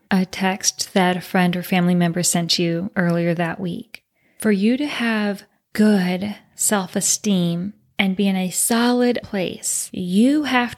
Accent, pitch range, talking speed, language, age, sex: American, 185-230 Hz, 150 wpm, English, 30-49, female